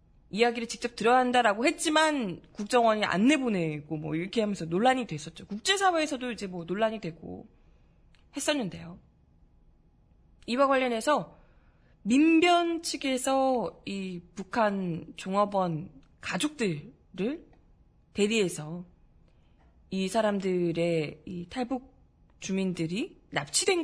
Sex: female